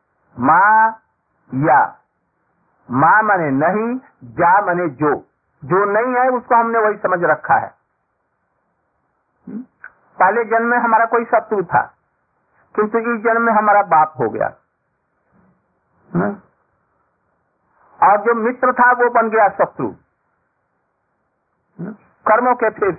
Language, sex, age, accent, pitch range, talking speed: Hindi, male, 50-69, native, 180-240 Hz, 110 wpm